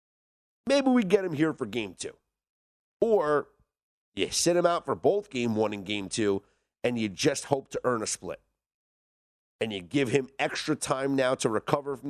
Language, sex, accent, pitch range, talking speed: English, male, American, 105-145 Hz, 190 wpm